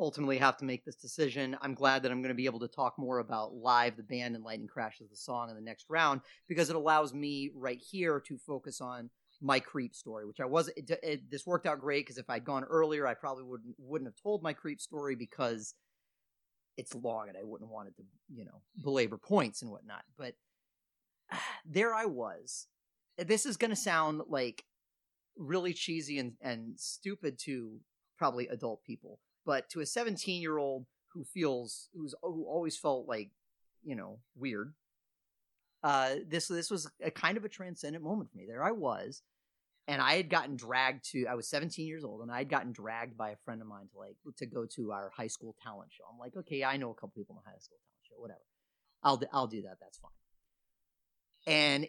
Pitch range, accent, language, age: 120-160 Hz, American, English, 30-49